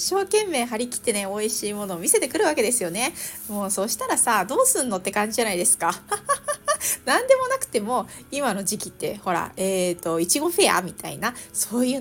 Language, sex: Japanese, female